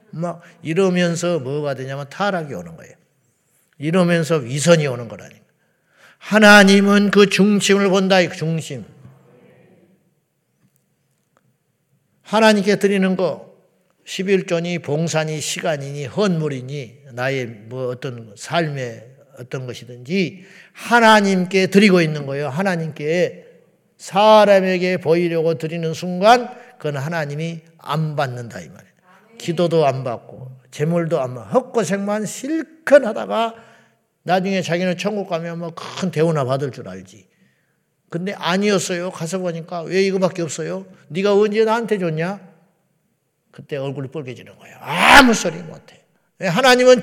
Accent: Japanese